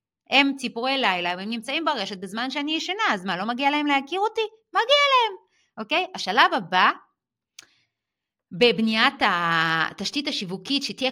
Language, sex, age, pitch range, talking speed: Hebrew, female, 30-49, 205-315 Hz, 135 wpm